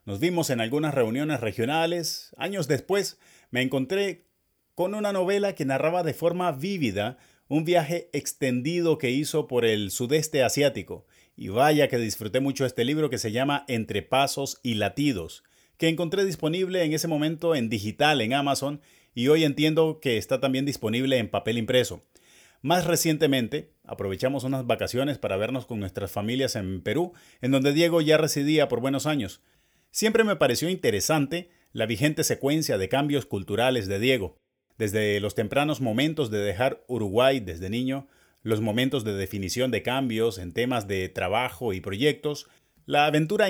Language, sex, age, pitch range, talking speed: Spanish, male, 30-49, 115-160 Hz, 160 wpm